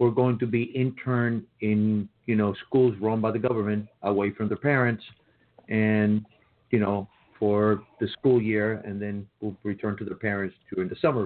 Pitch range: 100-115 Hz